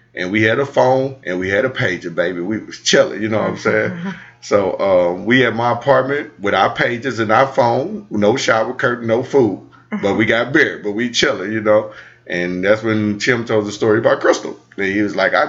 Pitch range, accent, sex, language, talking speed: 95-120 Hz, American, male, English, 230 wpm